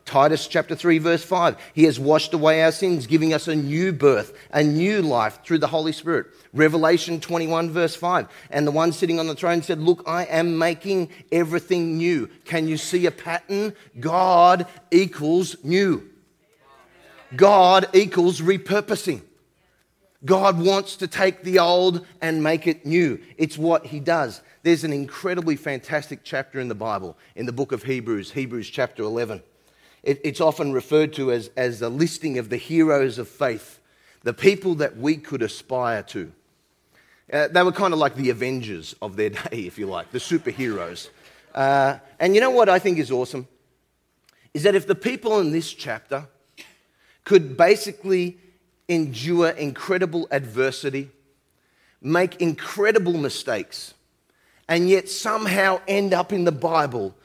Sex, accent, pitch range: male, Australian, 140-180 Hz